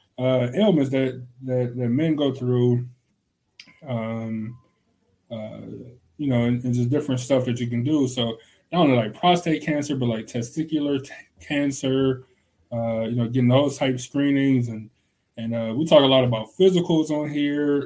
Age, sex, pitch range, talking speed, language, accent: 20-39, male, 115-135 Hz, 165 wpm, English, American